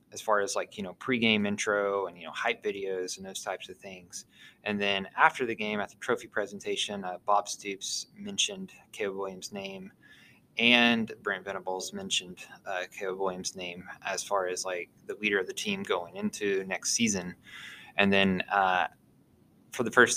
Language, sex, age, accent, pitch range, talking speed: English, male, 20-39, American, 95-130 Hz, 180 wpm